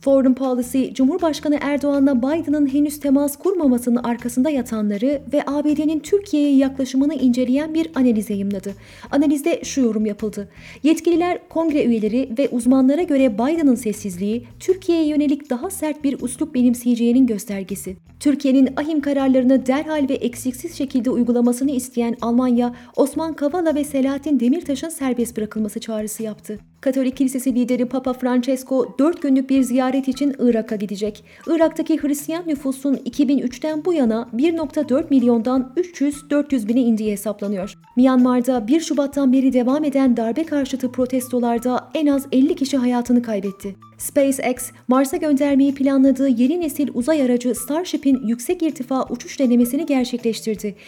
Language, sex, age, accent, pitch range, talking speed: Turkish, female, 30-49, native, 240-285 Hz, 130 wpm